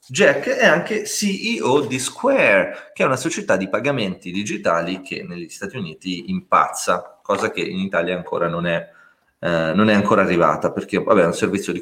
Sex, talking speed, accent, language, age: male, 185 wpm, native, Italian, 30-49